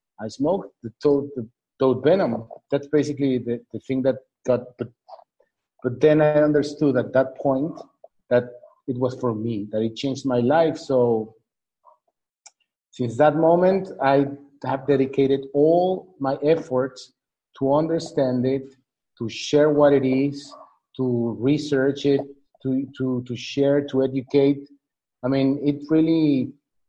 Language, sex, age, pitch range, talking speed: English, male, 50-69, 125-145 Hz, 140 wpm